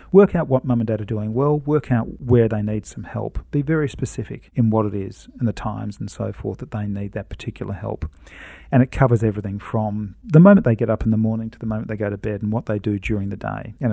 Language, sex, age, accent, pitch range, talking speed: English, male, 40-59, Australian, 105-125 Hz, 270 wpm